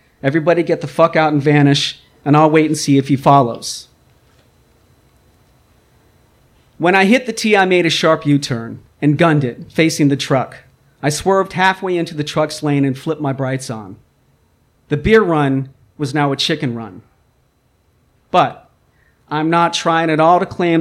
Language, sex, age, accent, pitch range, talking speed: English, male, 40-59, American, 140-170 Hz, 170 wpm